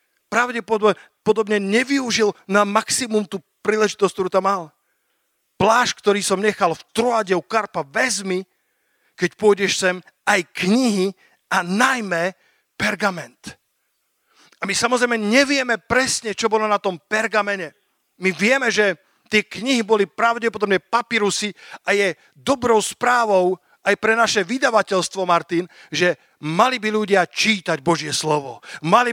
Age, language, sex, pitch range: 50-69, Slovak, male, 175-220 Hz